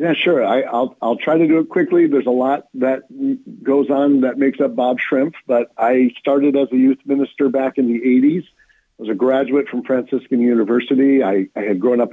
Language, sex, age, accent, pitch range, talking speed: English, male, 50-69, American, 115-140 Hz, 220 wpm